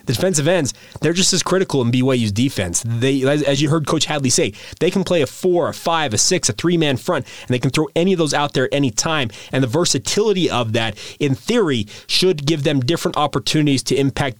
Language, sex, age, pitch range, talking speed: English, male, 30-49, 125-160 Hz, 230 wpm